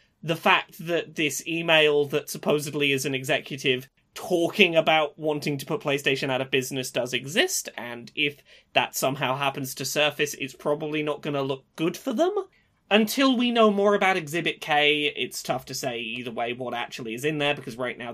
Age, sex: 20-39, male